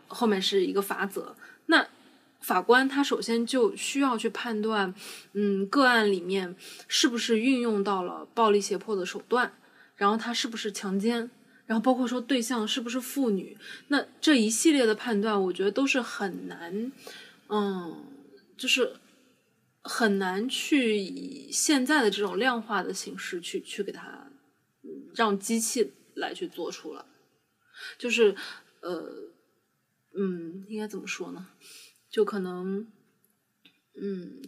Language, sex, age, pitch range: Chinese, female, 20-39, 205-275 Hz